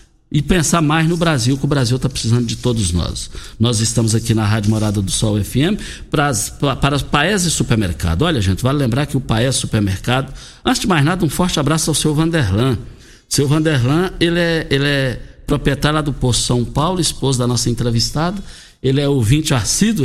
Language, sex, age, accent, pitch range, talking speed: Portuguese, male, 60-79, Brazilian, 115-160 Hz, 200 wpm